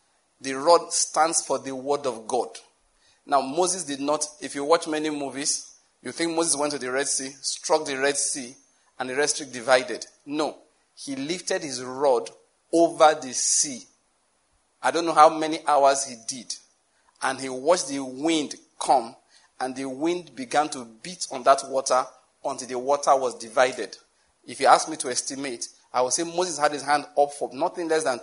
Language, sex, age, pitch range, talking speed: English, male, 40-59, 135-165 Hz, 185 wpm